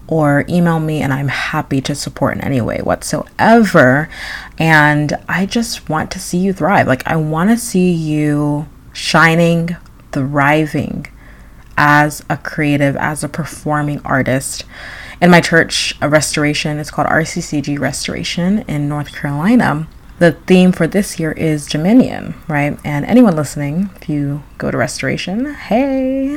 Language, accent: English, American